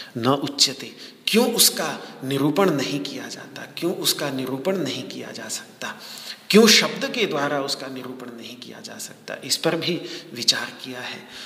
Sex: male